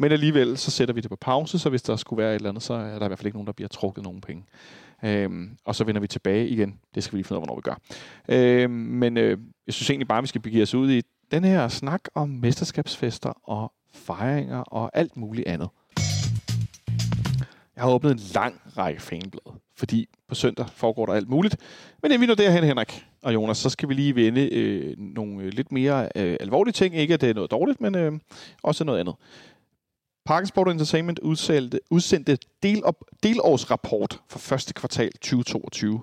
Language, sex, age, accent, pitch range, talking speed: Danish, male, 40-59, native, 110-150 Hz, 210 wpm